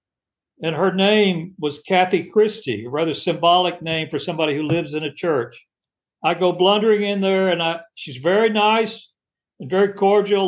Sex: male